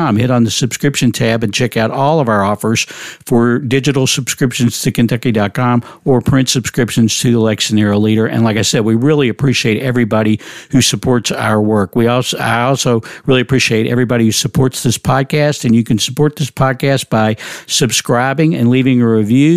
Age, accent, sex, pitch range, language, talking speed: 50-69, American, male, 110-135 Hz, English, 180 wpm